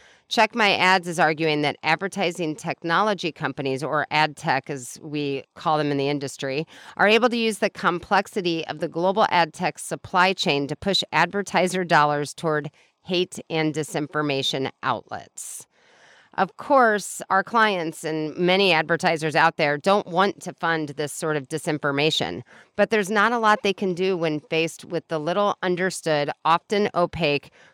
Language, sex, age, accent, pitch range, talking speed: English, female, 40-59, American, 150-190 Hz, 160 wpm